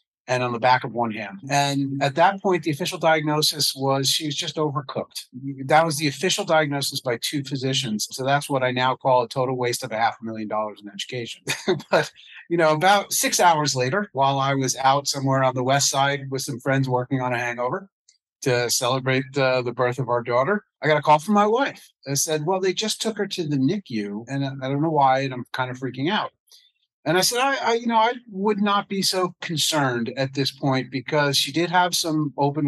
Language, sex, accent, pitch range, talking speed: English, male, American, 130-155 Hz, 230 wpm